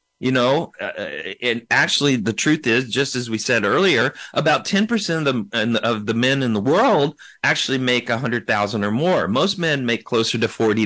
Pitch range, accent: 115-150 Hz, American